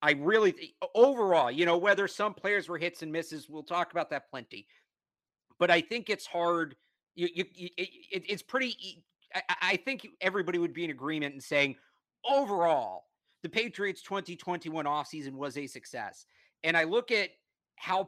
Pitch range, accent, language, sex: 145-180 Hz, American, English, male